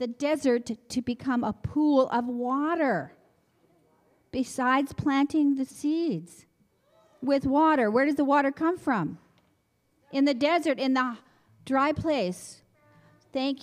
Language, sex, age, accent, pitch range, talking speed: English, female, 50-69, American, 225-280 Hz, 125 wpm